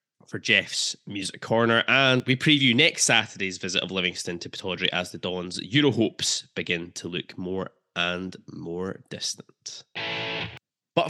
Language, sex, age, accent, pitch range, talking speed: English, male, 20-39, British, 95-125 Hz, 145 wpm